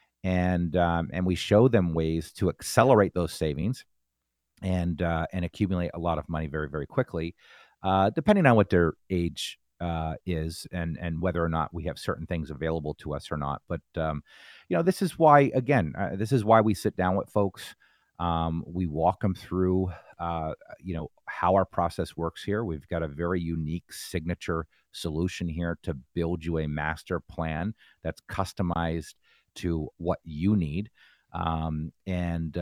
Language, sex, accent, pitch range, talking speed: English, male, American, 80-100 Hz, 175 wpm